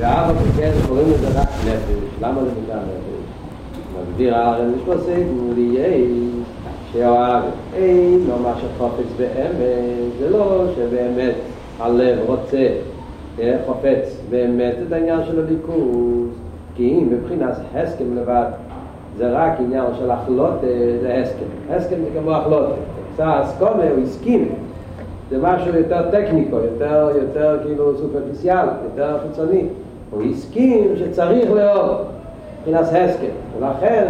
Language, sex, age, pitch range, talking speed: Hebrew, male, 40-59, 120-170 Hz, 120 wpm